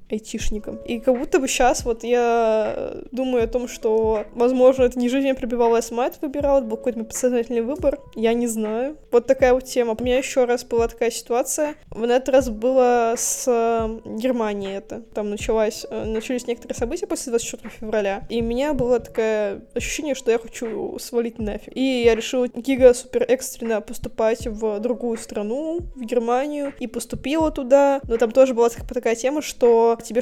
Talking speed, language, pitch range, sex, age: 180 wpm, Russian, 230-260 Hz, female, 10-29